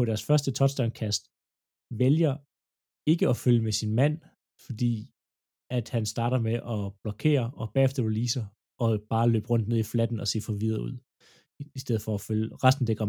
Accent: native